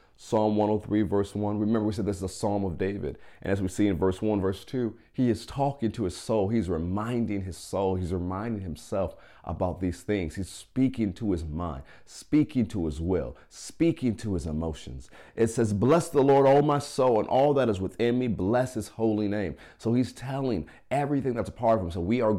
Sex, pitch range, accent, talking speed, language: male, 85-110 Hz, American, 215 wpm, English